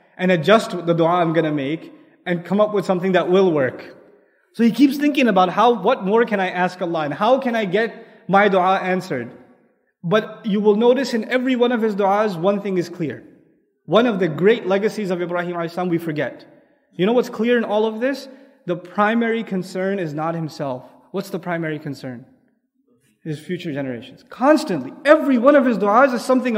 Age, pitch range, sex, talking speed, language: 20-39, 180-260 Hz, male, 200 wpm, English